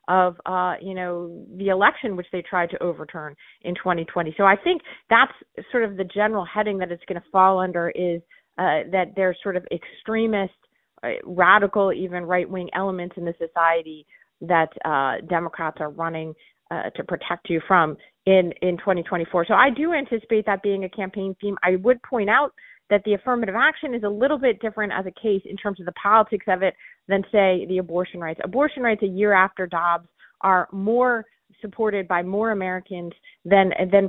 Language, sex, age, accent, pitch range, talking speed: English, female, 30-49, American, 180-205 Hz, 190 wpm